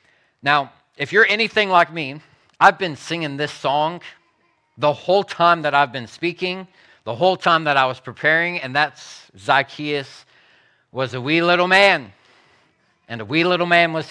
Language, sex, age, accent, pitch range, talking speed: English, male, 40-59, American, 120-165 Hz, 165 wpm